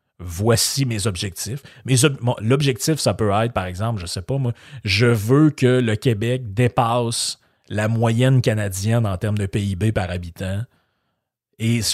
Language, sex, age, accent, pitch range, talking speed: French, male, 30-49, Canadian, 100-125 Hz, 165 wpm